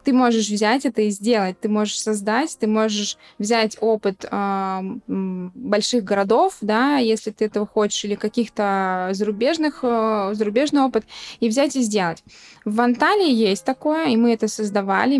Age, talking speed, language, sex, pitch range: 20-39, 155 wpm, Russian, female, 205-245 Hz